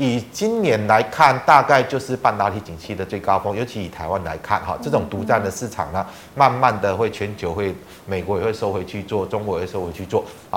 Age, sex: 30-49, male